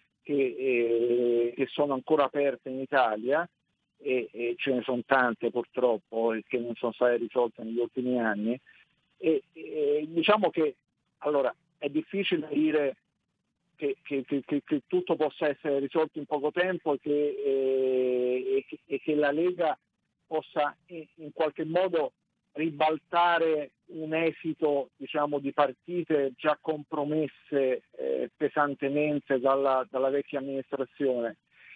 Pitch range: 130-160 Hz